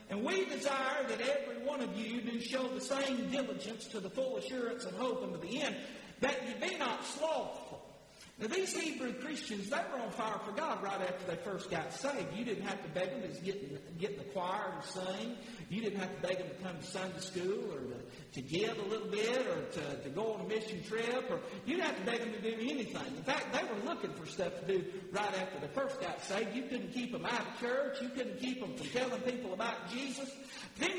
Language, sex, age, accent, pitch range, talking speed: English, male, 50-69, American, 210-280 Hz, 240 wpm